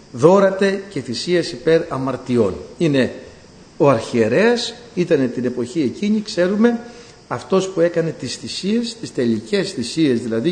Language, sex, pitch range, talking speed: Greek, male, 125-190 Hz, 120 wpm